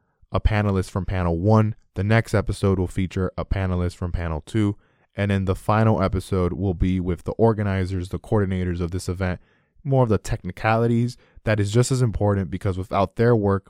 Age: 20-39